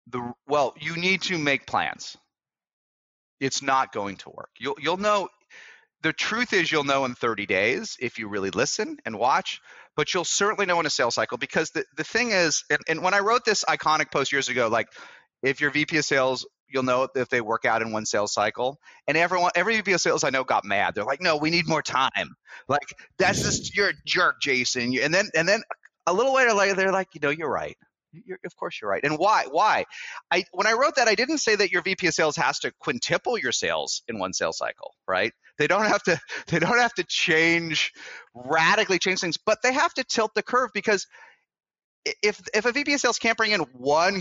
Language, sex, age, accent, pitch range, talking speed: English, male, 30-49, American, 140-215 Hz, 225 wpm